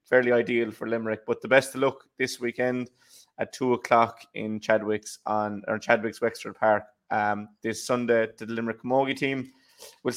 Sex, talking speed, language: male, 170 wpm, English